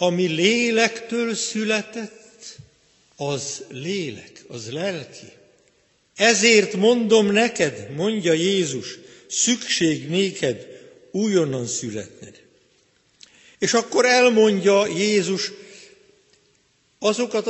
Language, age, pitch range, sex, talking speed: Hungarian, 60-79, 180-215 Hz, male, 70 wpm